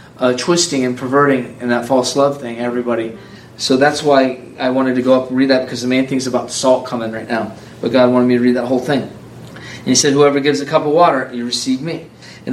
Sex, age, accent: male, 30-49, American